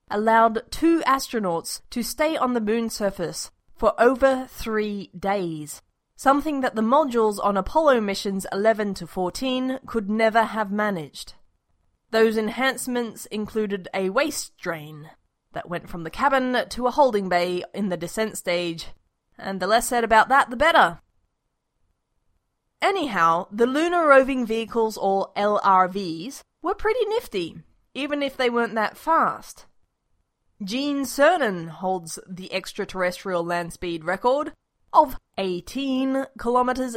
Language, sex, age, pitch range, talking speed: English, female, 20-39, 185-260 Hz, 130 wpm